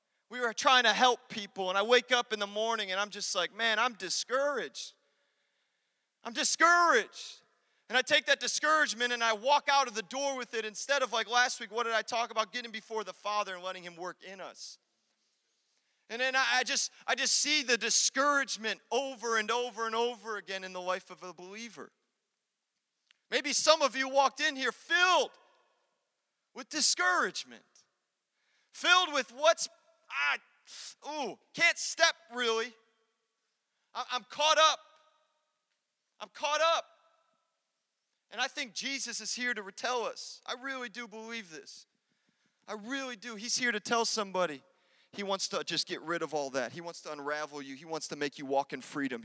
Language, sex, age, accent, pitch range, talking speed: English, male, 30-49, American, 210-280 Hz, 180 wpm